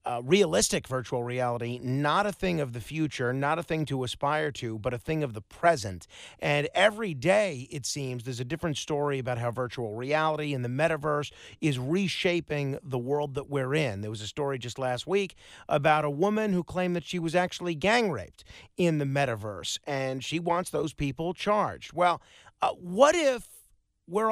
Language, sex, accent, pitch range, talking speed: English, male, American, 130-180 Hz, 190 wpm